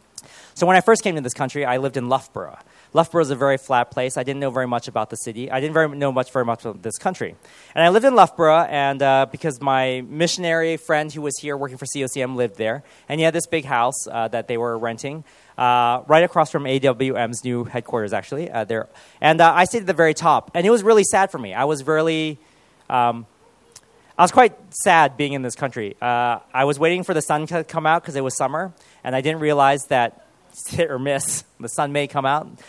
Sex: male